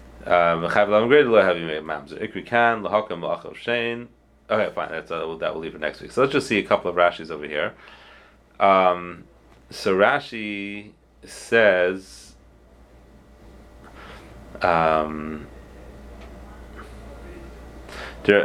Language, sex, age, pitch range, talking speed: English, male, 30-49, 85-110 Hz, 75 wpm